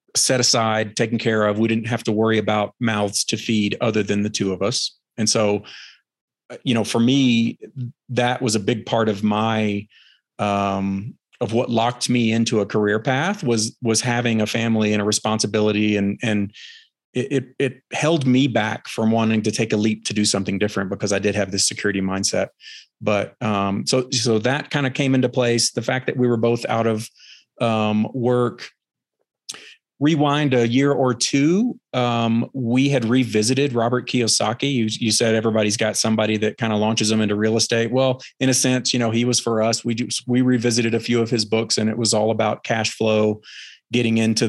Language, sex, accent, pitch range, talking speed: English, male, American, 110-125 Hz, 200 wpm